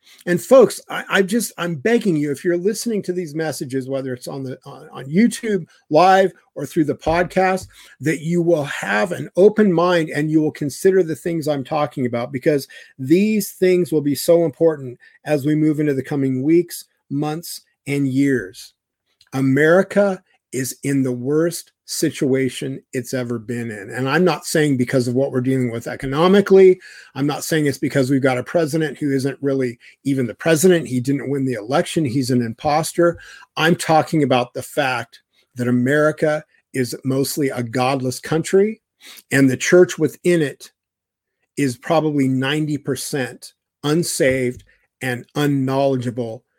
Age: 50-69